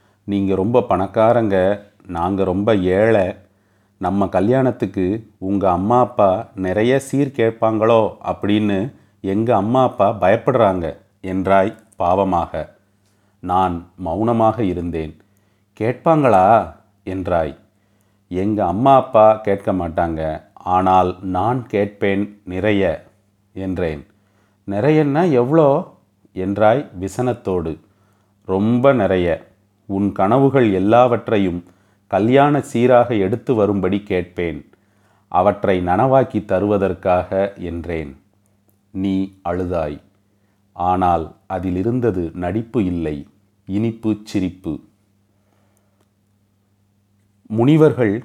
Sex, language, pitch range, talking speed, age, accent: male, Tamil, 95-110 Hz, 80 wpm, 40-59, native